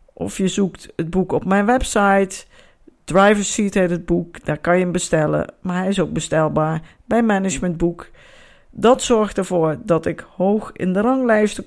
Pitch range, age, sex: 160-205 Hz, 50-69, female